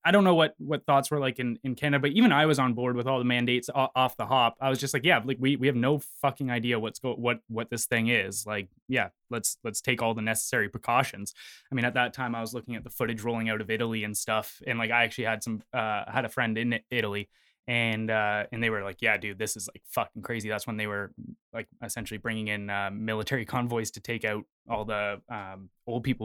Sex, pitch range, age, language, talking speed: male, 110-130 Hz, 20-39, English, 260 wpm